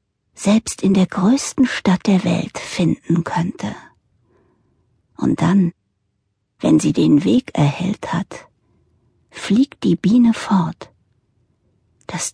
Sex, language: female, German